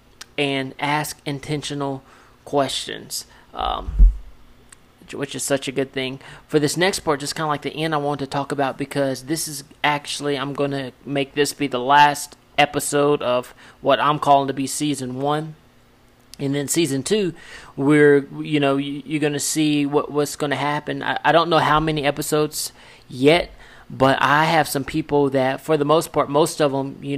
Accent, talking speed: American, 190 wpm